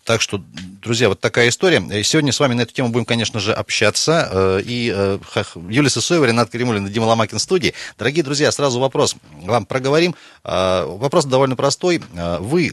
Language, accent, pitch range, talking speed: Russian, native, 90-125 Hz, 165 wpm